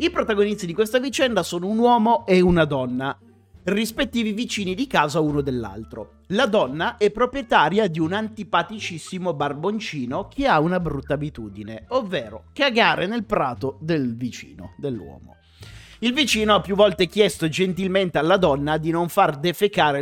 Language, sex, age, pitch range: Italian, male, 30-49, 140-210 Hz